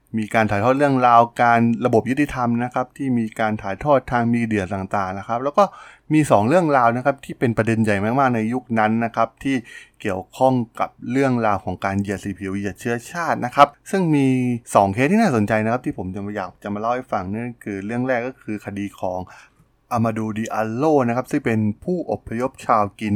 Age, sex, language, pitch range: 20-39, male, Thai, 105-130 Hz